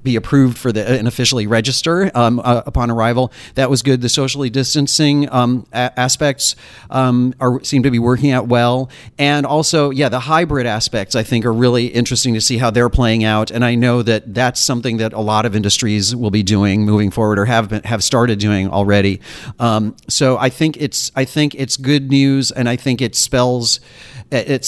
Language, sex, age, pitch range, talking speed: English, male, 40-59, 115-135 Hz, 205 wpm